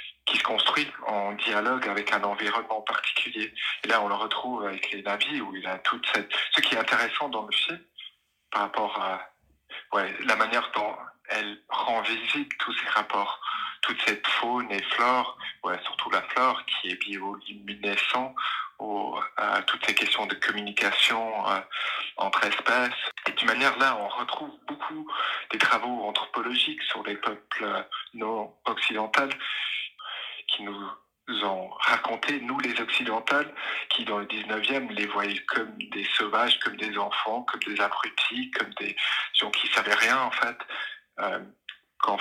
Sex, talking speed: male, 155 wpm